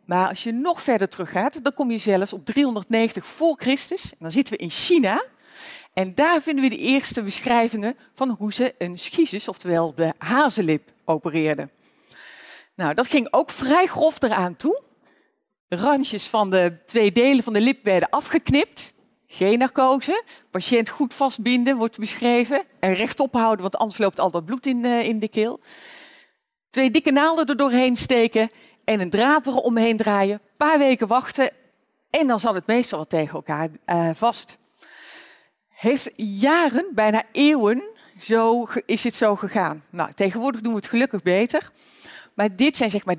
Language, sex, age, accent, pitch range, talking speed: Dutch, female, 40-59, Dutch, 195-265 Hz, 165 wpm